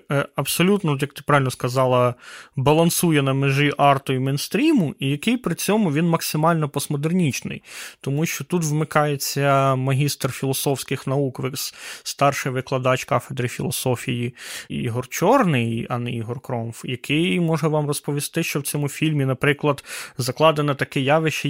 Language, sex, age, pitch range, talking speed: Ukrainian, male, 20-39, 135-165 Hz, 130 wpm